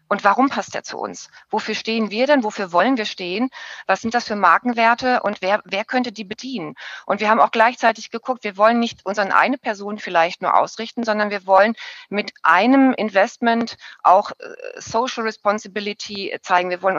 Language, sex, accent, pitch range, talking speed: German, female, German, 195-235 Hz, 185 wpm